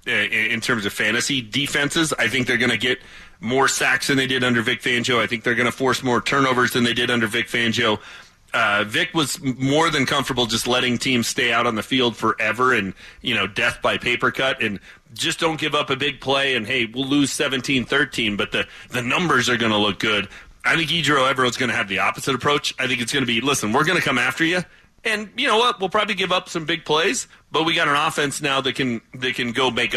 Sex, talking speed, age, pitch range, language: male, 245 wpm, 30-49, 120-150 Hz, English